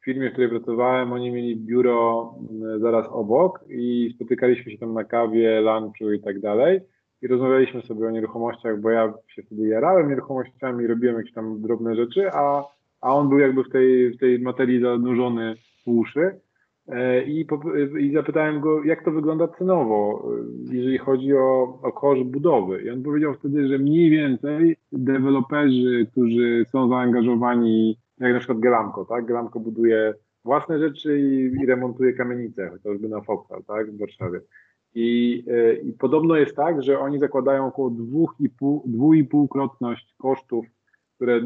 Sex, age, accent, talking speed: male, 20-39, native, 155 wpm